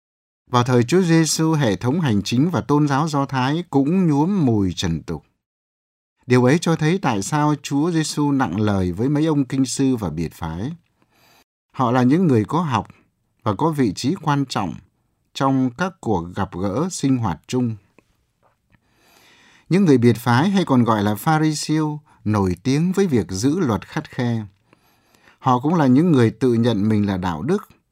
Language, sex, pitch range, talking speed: Vietnamese, male, 105-150 Hz, 180 wpm